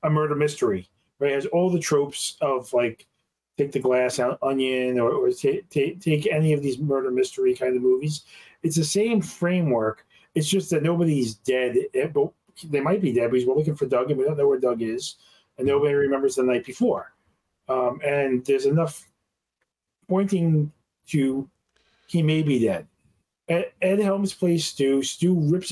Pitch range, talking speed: 140-185 Hz, 175 wpm